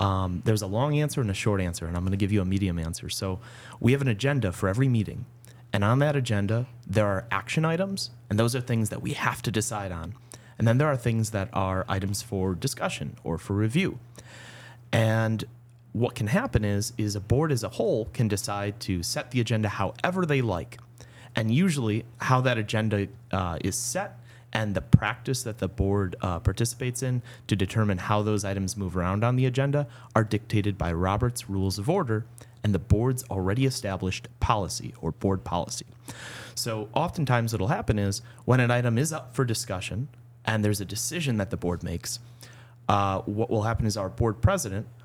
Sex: male